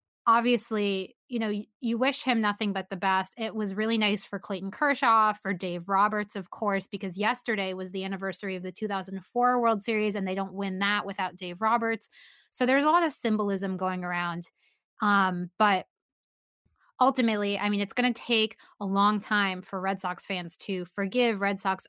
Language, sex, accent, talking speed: English, female, American, 185 wpm